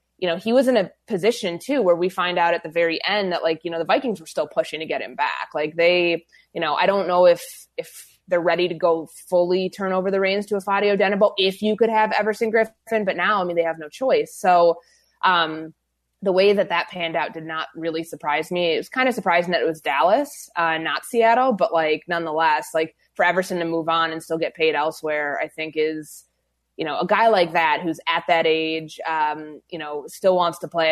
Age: 20-39